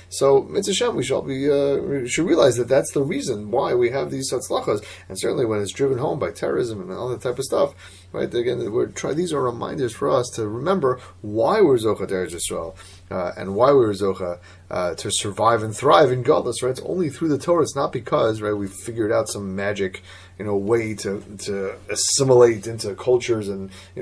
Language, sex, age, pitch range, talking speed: English, male, 30-49, 95-150 Hz, 205 wpm